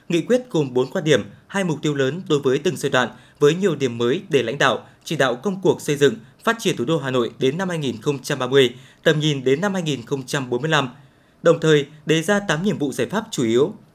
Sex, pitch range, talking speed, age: male, 135-190 Hz, 230 wpm, 20-39